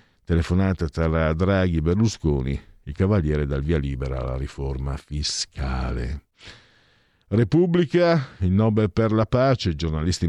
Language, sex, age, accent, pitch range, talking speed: Italian, male, 50-69, native, 75-110 Hz, 120 wpm